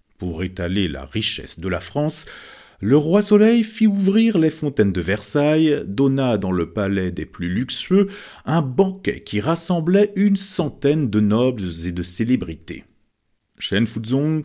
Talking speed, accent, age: 145 wpm, French, 40-59